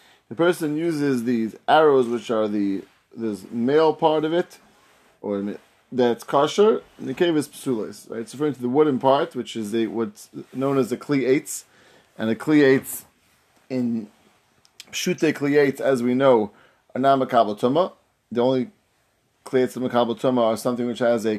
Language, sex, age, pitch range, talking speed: English, male, 30-49, 115-145 Hz, 160 wpm